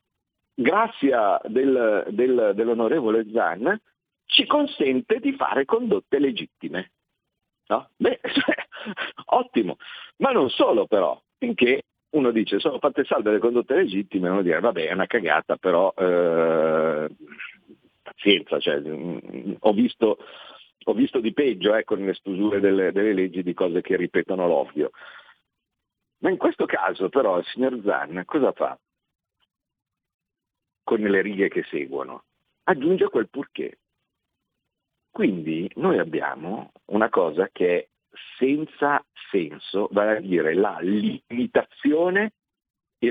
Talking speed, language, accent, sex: 115 wpm, Italian, native, male